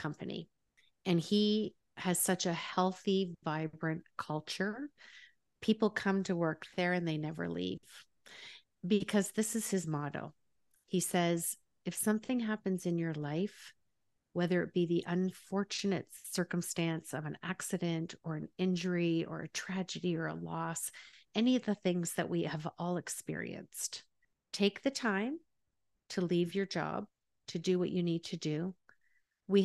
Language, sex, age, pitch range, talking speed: English, female, 50-69, 165-195 Hz, 150 wpm